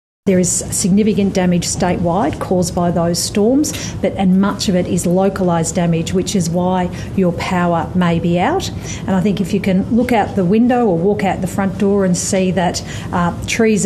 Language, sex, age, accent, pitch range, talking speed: English, female, 40-59, Australian, 140-175 Hz, 200 wpm